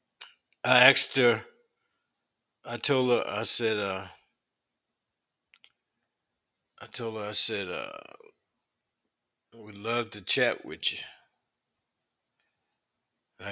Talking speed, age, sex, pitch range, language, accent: 95 wpm, 50-69, male, 105-125 Hz, English, American